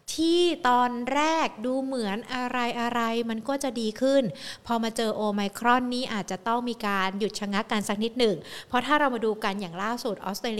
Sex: female